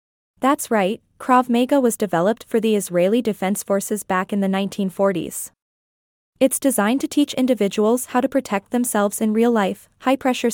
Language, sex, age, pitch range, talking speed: English, female, 20-39, 200-250 Hz, 155 wpm